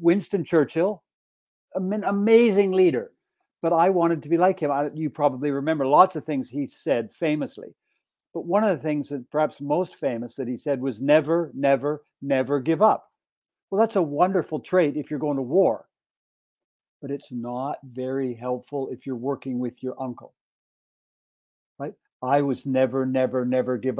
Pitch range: 135-170 Hz